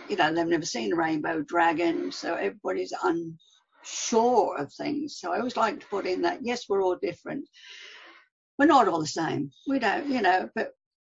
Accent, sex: British, female